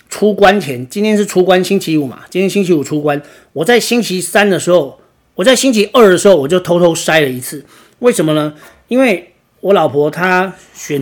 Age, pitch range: 40-59, 145-195 Hz